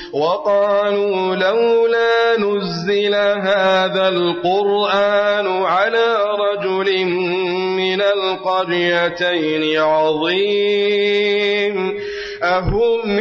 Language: Arabic